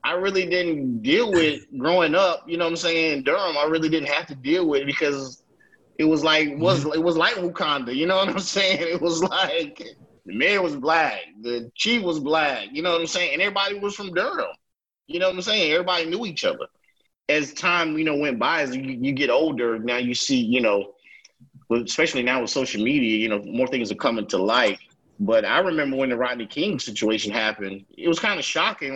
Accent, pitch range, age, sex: American, 125-175 Hz, 30-49, male